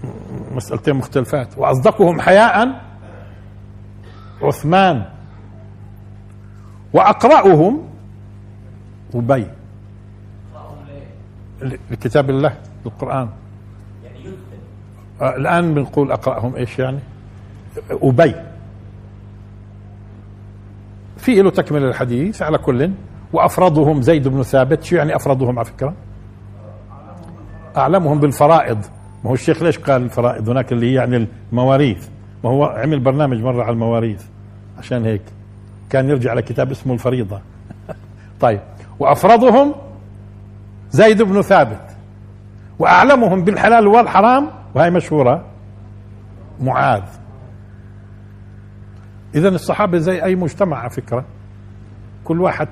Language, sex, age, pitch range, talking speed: Arabic, male, 50-69, 100-145 Hz, 90 wpm